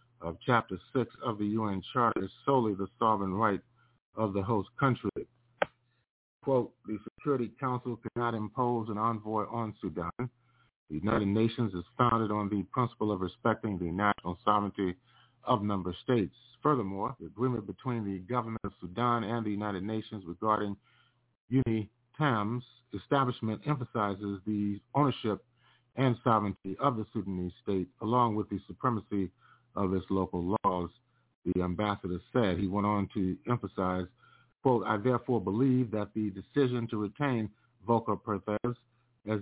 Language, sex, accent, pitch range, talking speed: English, male, American, 100-125 Hz, 145 wpm